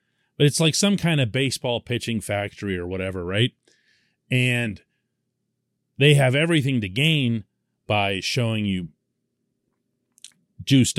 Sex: male